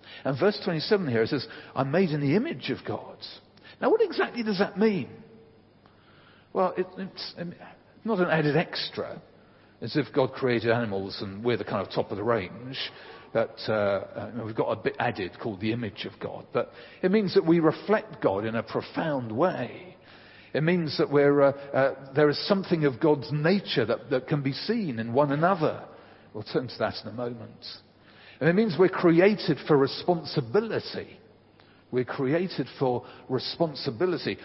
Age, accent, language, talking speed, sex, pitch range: 50-69, British, English, 175 wpm, male, 120-180 Hz